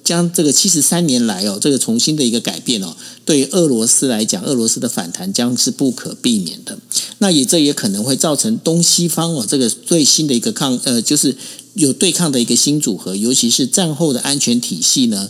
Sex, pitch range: male, 125-210 Hz